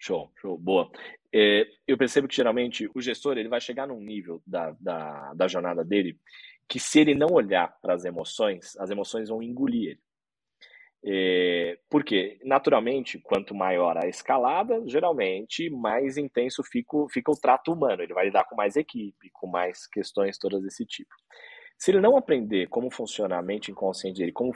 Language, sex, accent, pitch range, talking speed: Portuguese, male, Brazilian, 105-155 Hz, 175 wpm